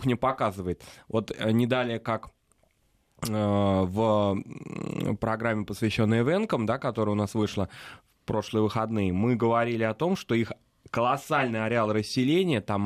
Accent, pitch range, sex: native, 105-130 Hz, male